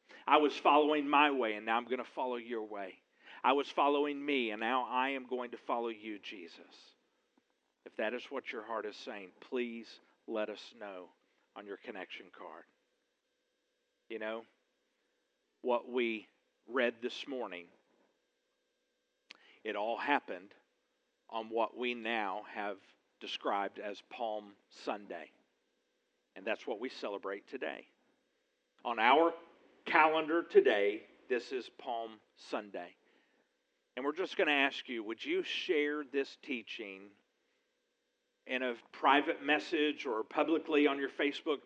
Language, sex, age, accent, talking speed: English, male, 50-69, American, 140 wpm